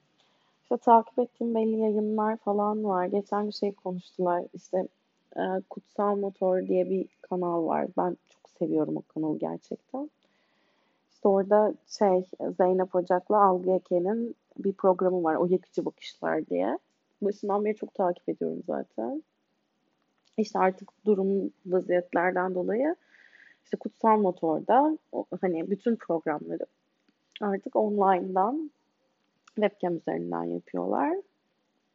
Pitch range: 180-220 Hz